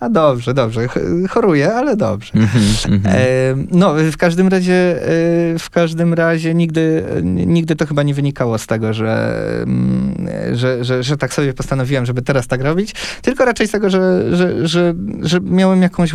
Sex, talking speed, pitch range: male, 155 wpm, 115-145 Hz